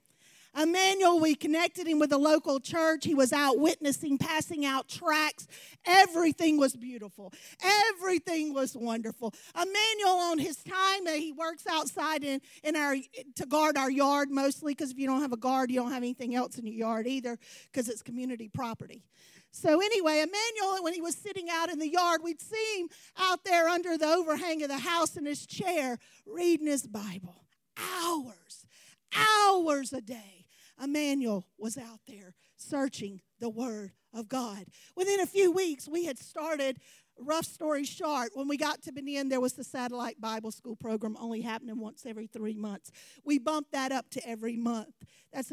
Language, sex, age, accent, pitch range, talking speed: English, female, 40-59, American, 230-320 Hz, 175 wpm